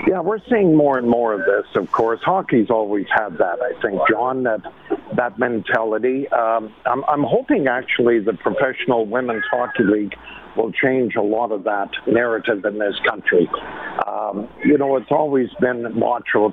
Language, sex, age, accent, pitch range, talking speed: English, male, 50-69, American, 110-135 Hz, 170 wpm